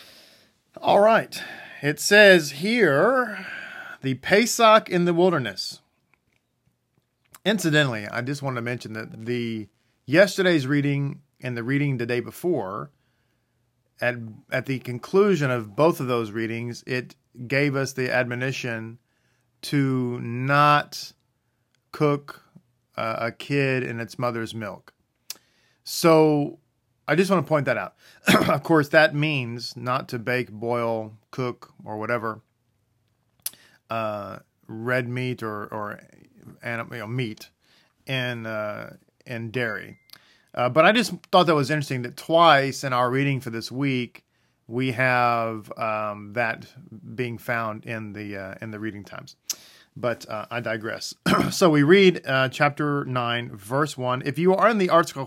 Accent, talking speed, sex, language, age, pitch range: American, 140 wpm, male, English, 40-59, 115-145 Hz